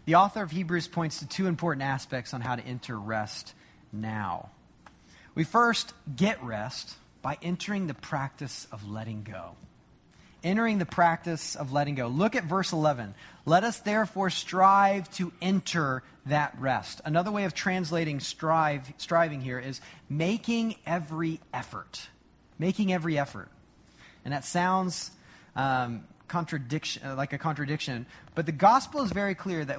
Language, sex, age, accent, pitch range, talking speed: English, male, 30-49, American, 125-175 Hz, 145 wpm